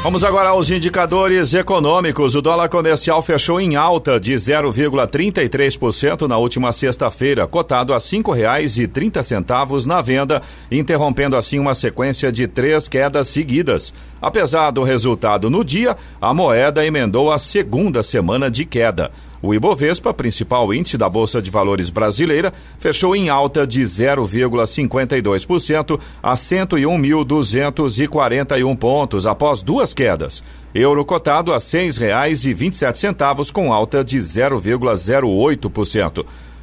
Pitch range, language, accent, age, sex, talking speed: 120-155 Hz, Portuguese, Brazilian, 40-59, male, 120 wpm